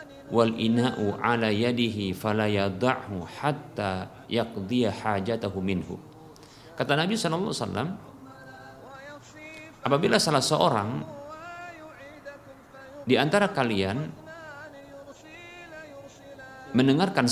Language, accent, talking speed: Indonesian, native, 45 wpm